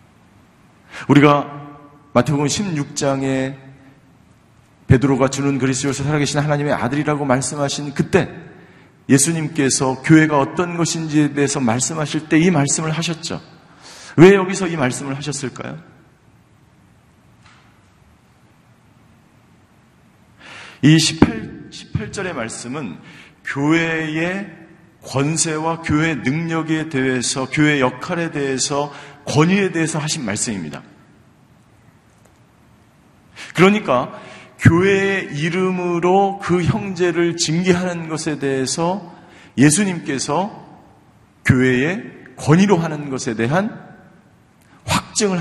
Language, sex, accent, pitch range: Korean, male, native, 130-170 Hz